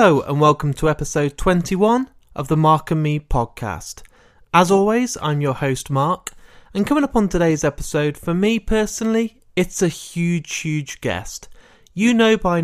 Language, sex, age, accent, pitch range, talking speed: English, male, 30-49, British, 135-180 Hz, 165 wpm